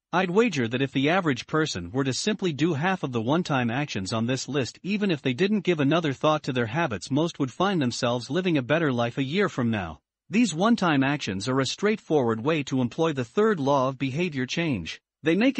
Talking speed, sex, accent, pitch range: 225 wpm, male, American, 130-190 Hz